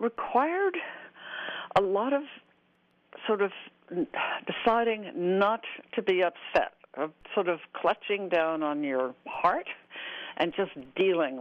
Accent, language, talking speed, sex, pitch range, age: American, English, 110 wpm, female, 150-200 Hz, 60-79